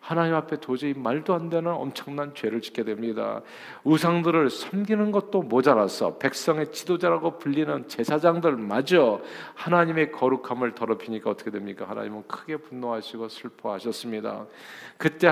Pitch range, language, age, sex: 115-150 Hz, Korean, 40-59, male